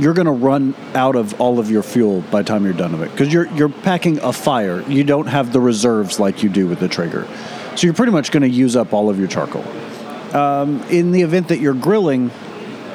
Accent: American